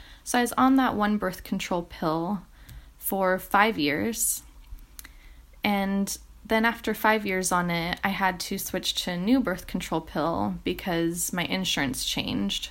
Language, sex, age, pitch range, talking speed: French, female, 20-39, 165-200 Hz, 155 wpm